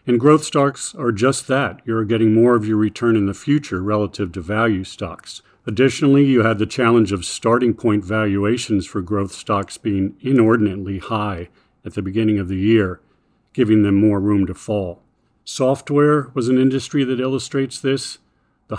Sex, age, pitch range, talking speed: male, 50-69, 105-130 Hz, 170 wpm